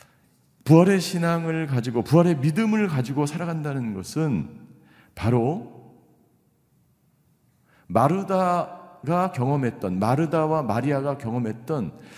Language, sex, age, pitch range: Korean, male, 50-69, 130-165 Hz